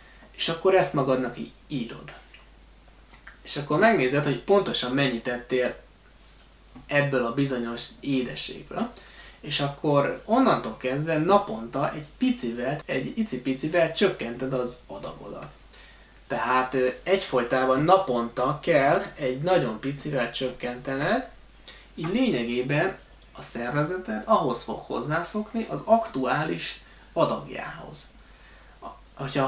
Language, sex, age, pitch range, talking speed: Hungarian, male, 20-39, 125-180 Hz, 95 wpm